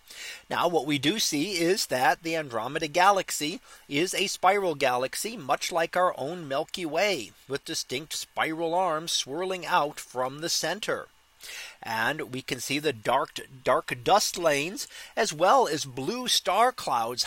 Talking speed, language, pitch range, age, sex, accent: 155 wpm, English, 140-200 Hz, 40-59, male, American